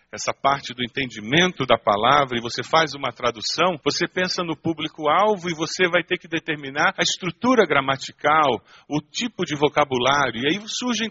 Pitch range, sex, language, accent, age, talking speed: 125-180 Hz, male, Portuguese, Brazilian, 50-69, 165 wpm